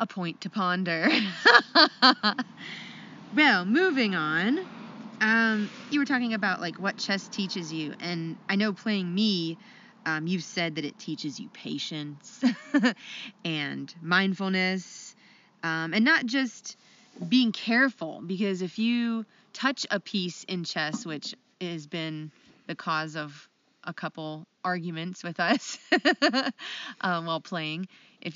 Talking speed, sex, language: 130 wpm, female, English